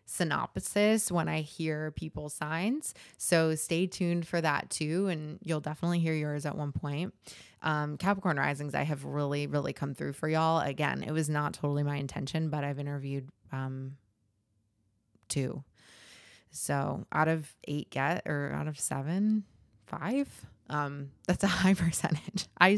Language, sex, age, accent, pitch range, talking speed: English, female, 20-39, American, 145-180 Hz, 155 wpm